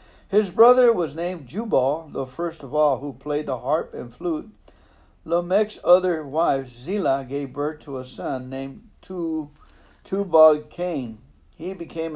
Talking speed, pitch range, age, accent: 140 wpm, 135-175 Hz, 60-79, American